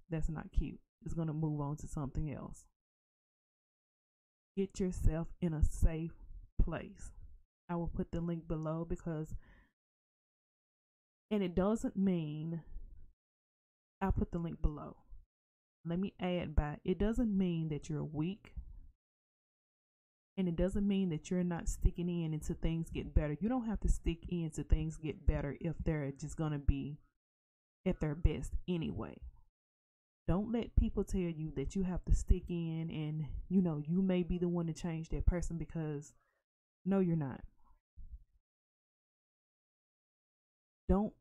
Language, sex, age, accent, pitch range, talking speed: English, female, 20-39, American, 145-180 Hz, 150 wpm